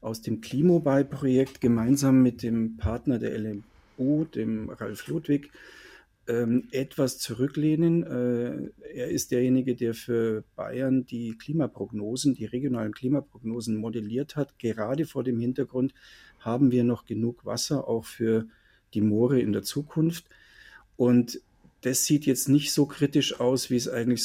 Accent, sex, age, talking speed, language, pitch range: German, male, 50-69, 140 wpm, German, 115-140 Hz